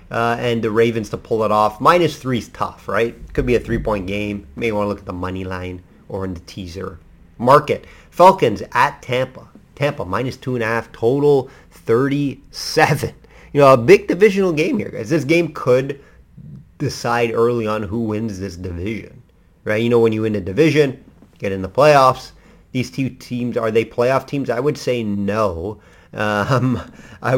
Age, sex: 30-49, male